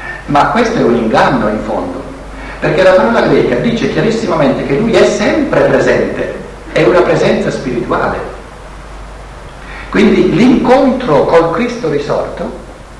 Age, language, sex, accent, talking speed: 60-79, Italian, male, native, 125 wpm